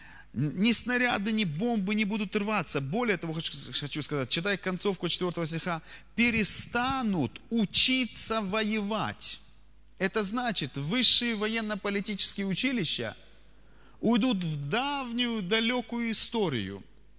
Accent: native